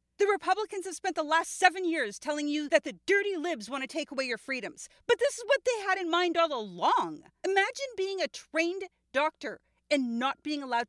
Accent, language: American, English